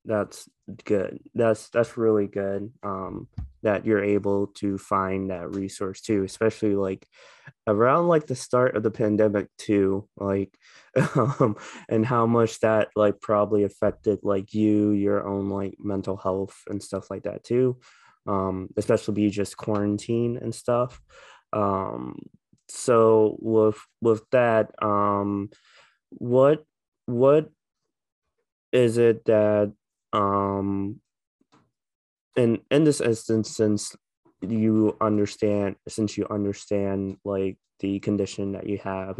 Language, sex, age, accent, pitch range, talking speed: English, male, 20-39, American, 100-115 Hz, 125 wpm